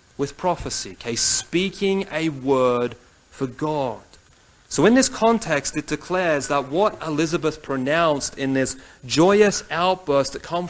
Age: 30-49